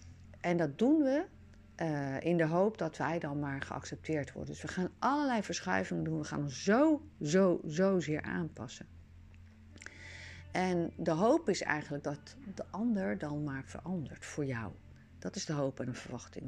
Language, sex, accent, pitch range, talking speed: Dutch, female, Dutch, 125-180 Hz, 175 wpm